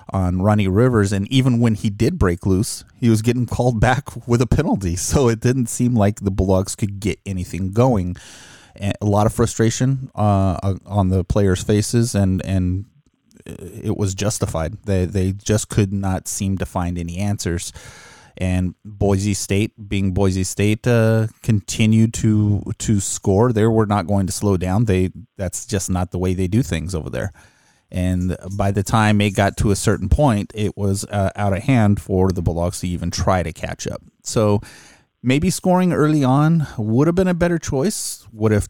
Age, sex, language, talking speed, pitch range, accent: 30-49, male, English, 190 wpm, 95-120 Hz, American